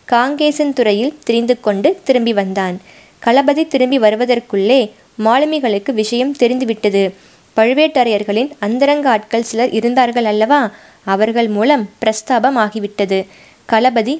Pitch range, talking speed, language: 210-260 Hz, 95 wpm, Tamil